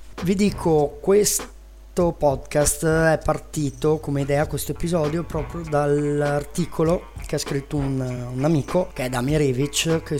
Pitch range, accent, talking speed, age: 130-155 Hz, native, 135 wpm, 30-49